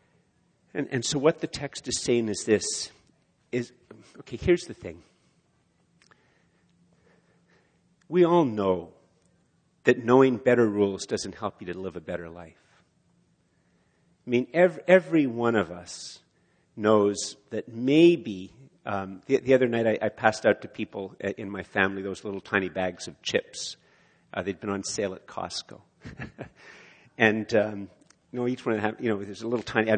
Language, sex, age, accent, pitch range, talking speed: English, male, 50-69, American, 100-125 Hz, 165 wpm